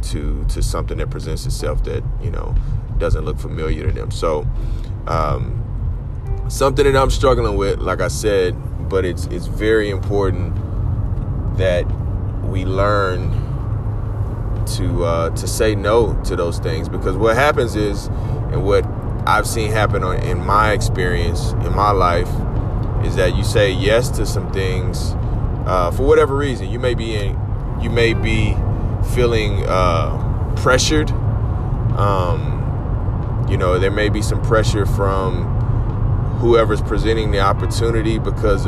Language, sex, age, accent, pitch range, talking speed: English, male, 30-49, American, 100-115 Hz, 145 wpm